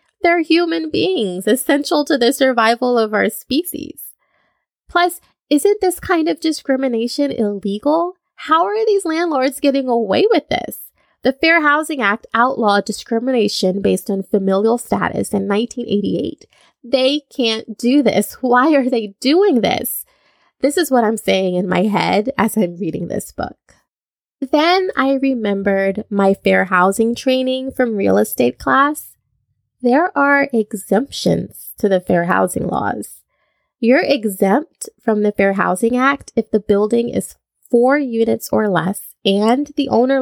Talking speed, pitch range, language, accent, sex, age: 145 wpm, 205-290 Hz, English, American, female, 20-39